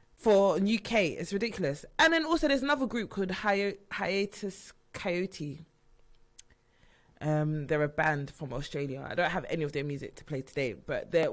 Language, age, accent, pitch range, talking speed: English, 20-39, British, 155-200 Hz, 170 wpm